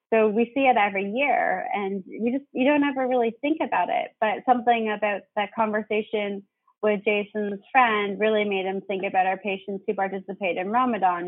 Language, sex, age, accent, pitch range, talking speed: English, female, 20-39, American, 190-220 Hz, 185 wpm